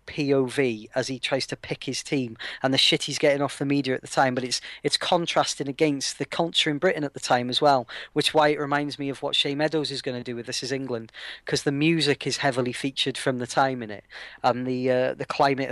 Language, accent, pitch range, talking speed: English, British, 125-145 Hz, 250 wpm